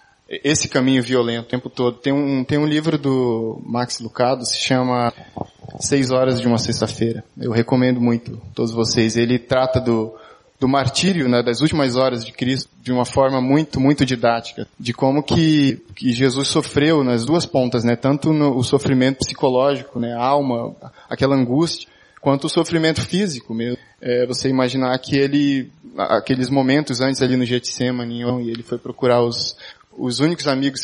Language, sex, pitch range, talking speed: Portuguese, male, 120-140 Hz, 170 wpm